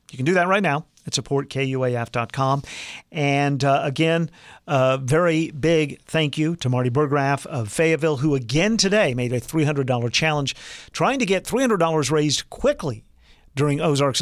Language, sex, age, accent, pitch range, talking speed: English, male, 50-69, American, 130-175 Hz, 150 wpm